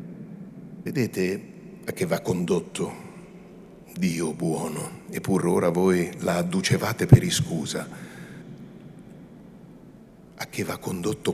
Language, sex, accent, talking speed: Italian, male, native, 95 wpm